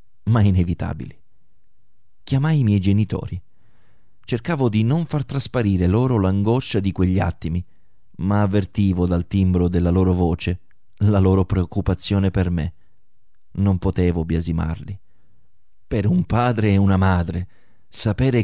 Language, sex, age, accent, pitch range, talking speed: Italian, male, 30-49, native, 95-115 Hz, 125 wpm